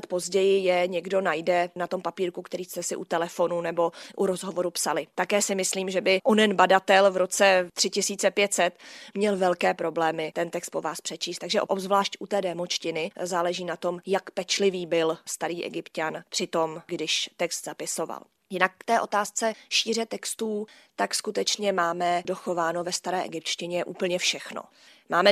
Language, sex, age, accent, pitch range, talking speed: Czech, female, 20-39, native, 170-190 Hz, 160 wpm